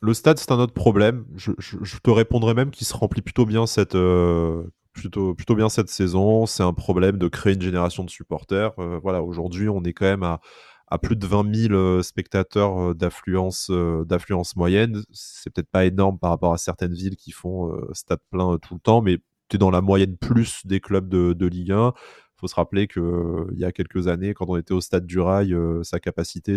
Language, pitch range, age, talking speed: French, 90-105 Hz, 20-39, 225 wpm